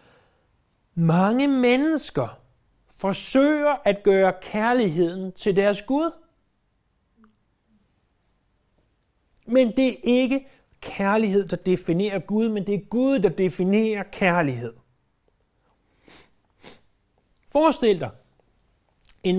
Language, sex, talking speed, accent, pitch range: Danish, male, 85 wpm, native, 160-220 Hz